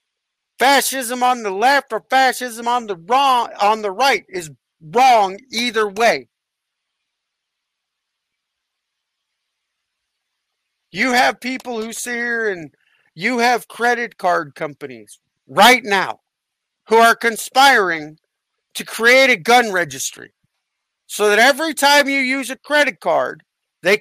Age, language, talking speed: 50-69, English, 115 wpm